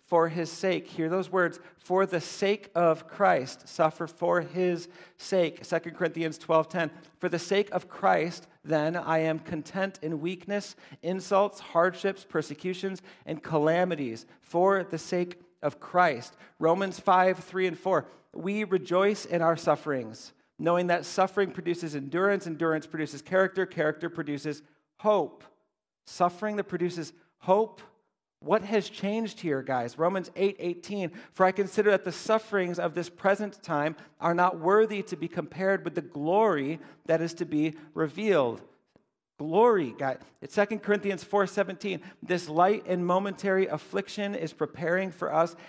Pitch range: 160-190 Hz